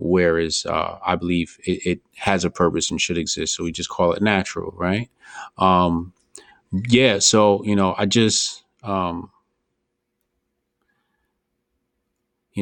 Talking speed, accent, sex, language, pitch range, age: 135 wpm, American, male, English, 90-130 Hz, 30-49